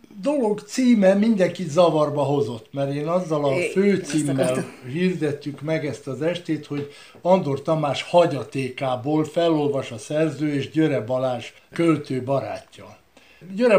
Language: Hungarian